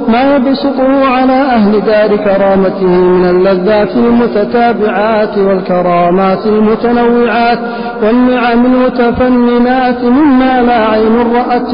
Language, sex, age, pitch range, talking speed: Arabic, male, 50-69, 200-240 Hz, 85 wpm